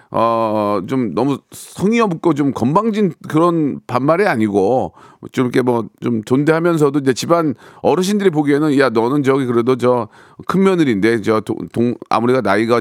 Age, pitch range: 40-59, 120-185 Hz